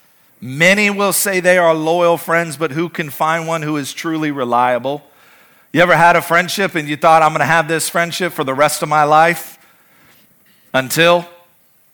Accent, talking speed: American, 185 wpm